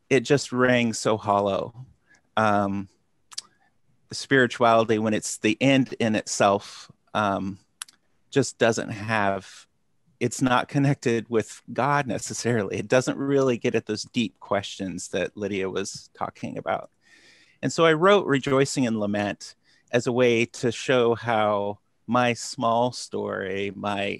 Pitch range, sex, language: 105-125 Hz, male, English